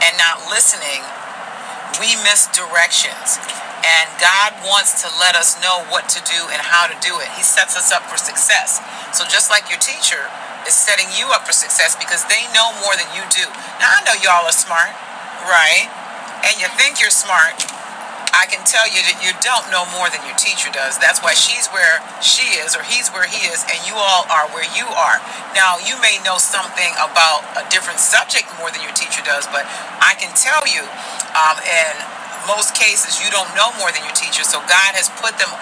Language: English